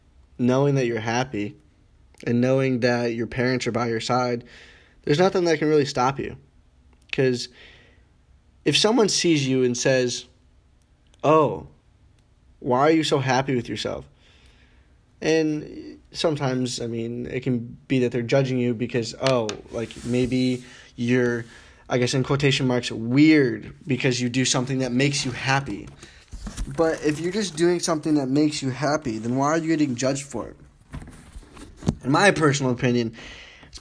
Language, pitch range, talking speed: English, 110-140 Hz, 155 wpm